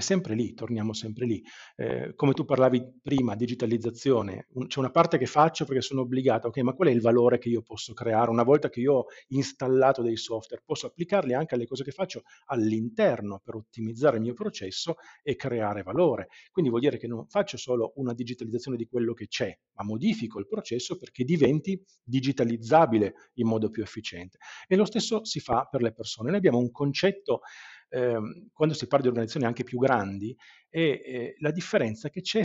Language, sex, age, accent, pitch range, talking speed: Italian, male, 40-59, native, 115-160 Hz, 190 wpm